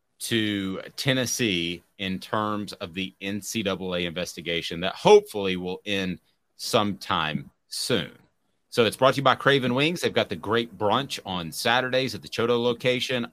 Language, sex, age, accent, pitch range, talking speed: English, male, 30-49, American, 100-130 Hz, 150 wpm